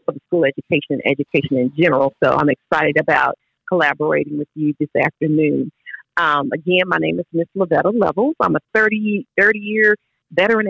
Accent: American